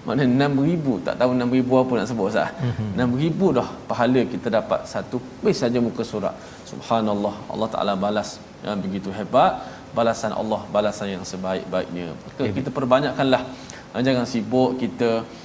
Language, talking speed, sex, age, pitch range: Malayalam, 150 wpm, male, 20-39, 110-135 Hz